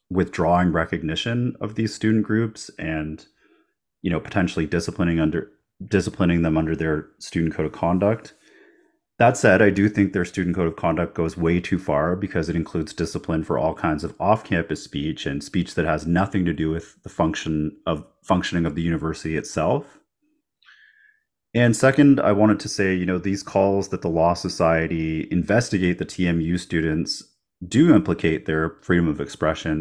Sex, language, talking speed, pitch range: male, English, 170 wpm, 80-105 Hz